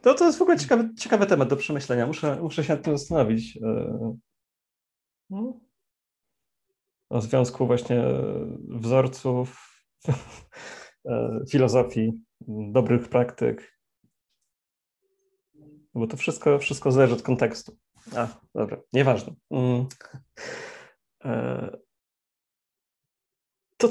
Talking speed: 80 wpm